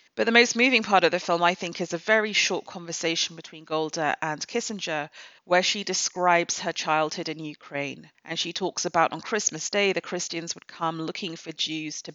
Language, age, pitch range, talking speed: English, 30-49, 160-190 Hz, 200 wpm